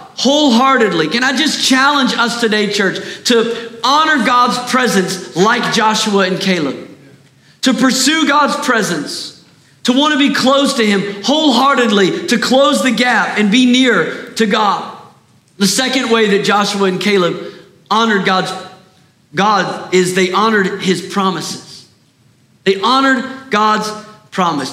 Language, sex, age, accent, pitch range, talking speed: English, male, 40-59, American, 185-245 Hz, 135 wpm